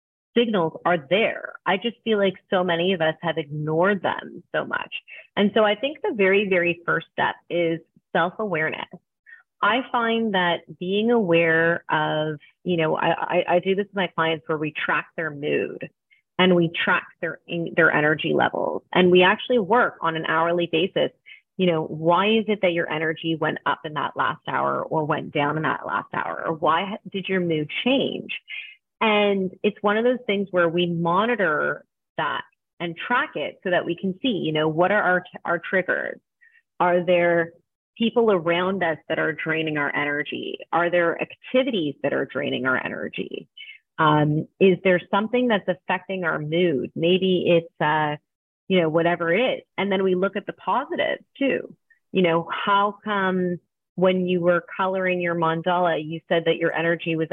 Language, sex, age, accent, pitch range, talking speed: English, female, 30-49, American, 165-200 Hz, 180 wpm